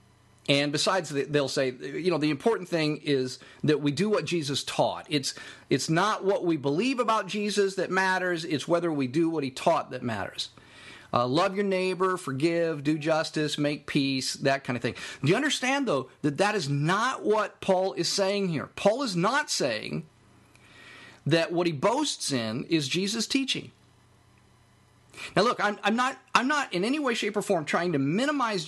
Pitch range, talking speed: 140-200 Hz, 185 wpm